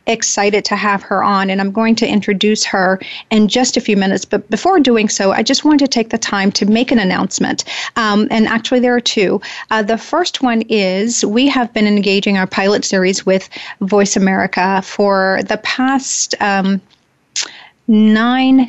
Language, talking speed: English, 185 wpm